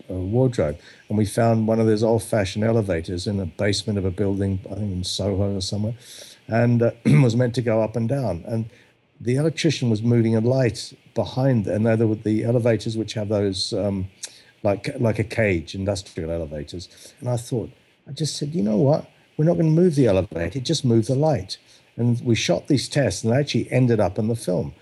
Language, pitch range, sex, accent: English, 100-120 Hz, male, British